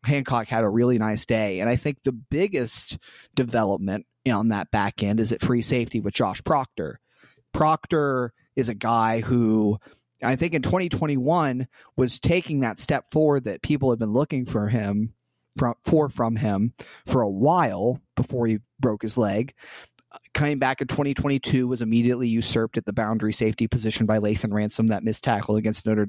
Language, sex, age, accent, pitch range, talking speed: English, male, 30-49, American, 110-135 Hz, 175 wpm